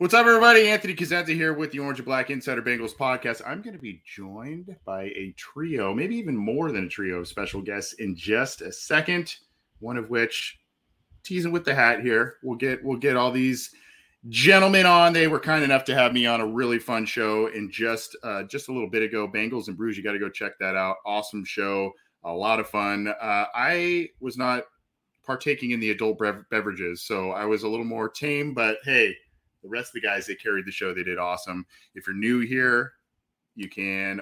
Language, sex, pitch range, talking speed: English, male, 105-125 Hz, 215 wpm